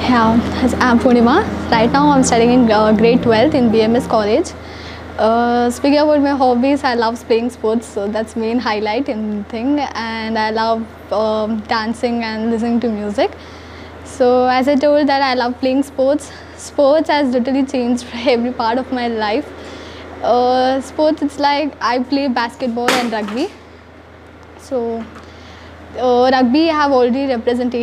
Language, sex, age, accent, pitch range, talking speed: Kannada, female, 10-29, native, 225-260 Hz, 160 wpm